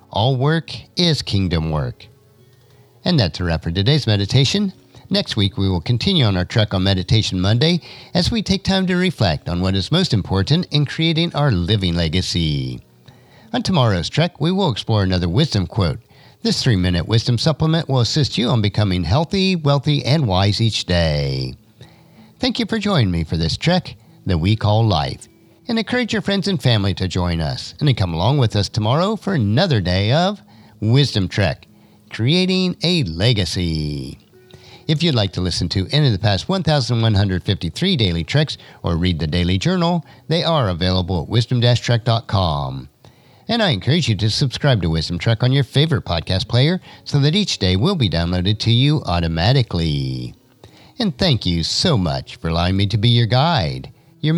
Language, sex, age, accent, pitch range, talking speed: English, male, 50-69, American, 95-150 Hz, 180 wpm